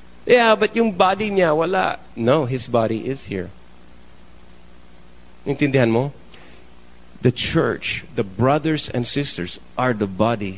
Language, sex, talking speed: English, male, 125 wpm